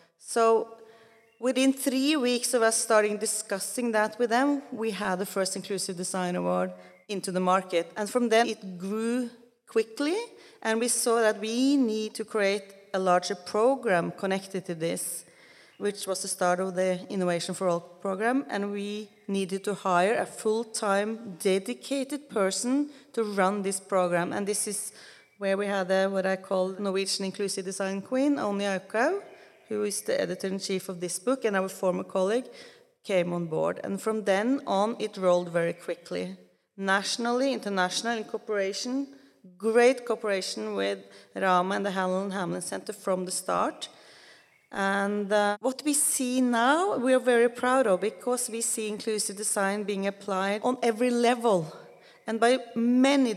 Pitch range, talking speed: 190-240 Hz, 160 wpm